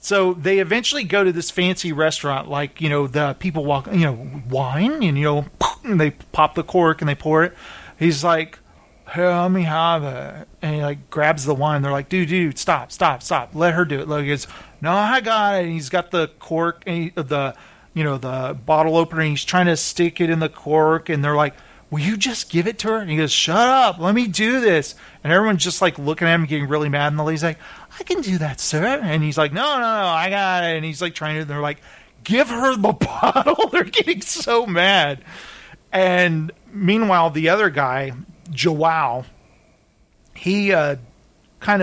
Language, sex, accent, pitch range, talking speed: English, male, American, 150-185 Hz, 215 wpm